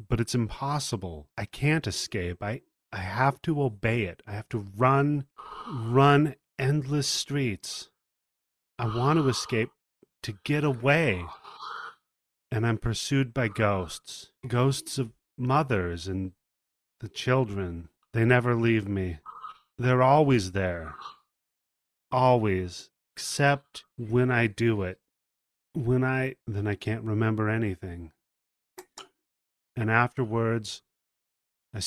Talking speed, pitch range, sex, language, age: 115 wpm, 95-135 Hz, male, English, 30-49